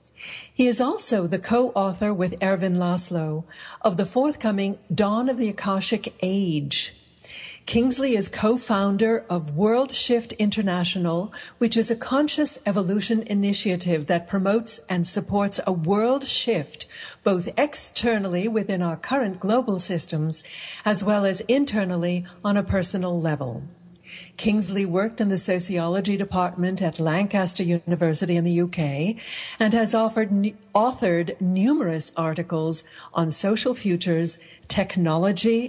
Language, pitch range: English, 175-220 Hz